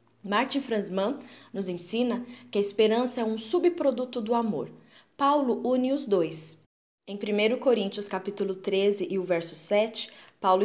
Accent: Brazilian